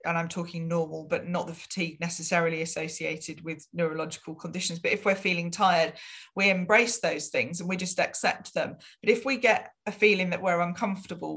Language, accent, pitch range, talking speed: English, British, 165-200 Hz, 190 wpm